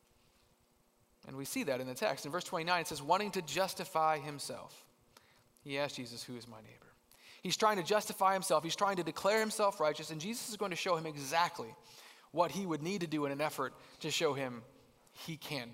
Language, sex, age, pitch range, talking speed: English, male, 30-49, 155-215 Hz, 215 wpm